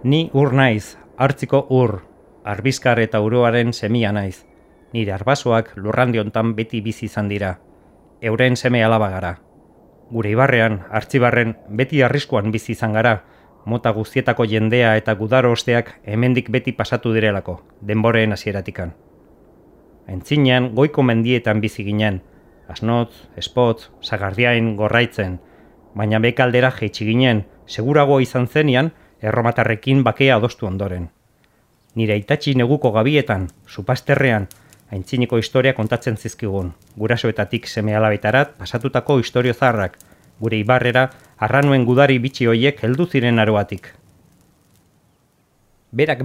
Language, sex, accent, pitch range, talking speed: Spanish, male, Spanish, 105-130 Hz, 105 wpm